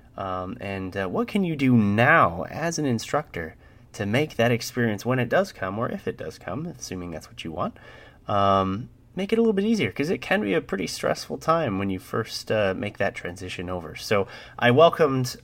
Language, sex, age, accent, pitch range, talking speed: English, male, 30-49, American, 90-130 Hz, 215 wpm